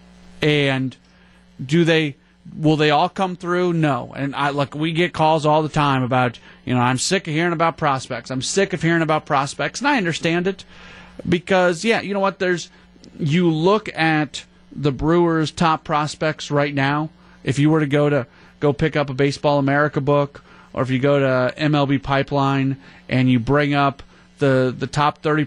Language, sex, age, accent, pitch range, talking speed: English, male, 40-59, American, 140-165 Hz, 195 wpm